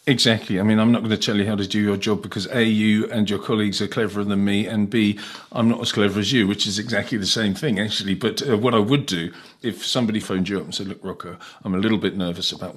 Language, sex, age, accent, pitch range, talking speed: English, male, 40-59, British, 95-130 Hz, 280 wpm